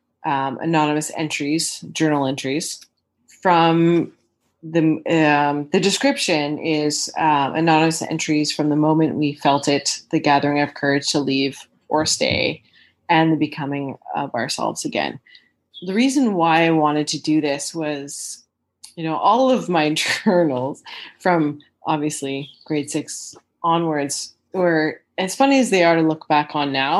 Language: English